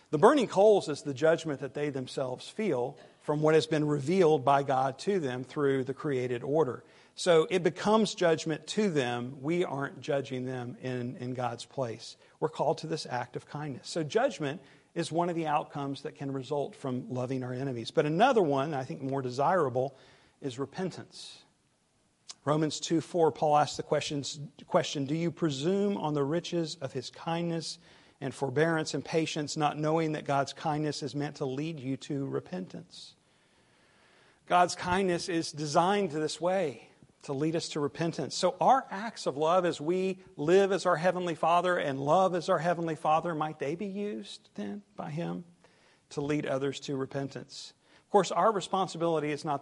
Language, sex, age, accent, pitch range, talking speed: English, male, 50-69, American, 135-170 Hz, 175 wpm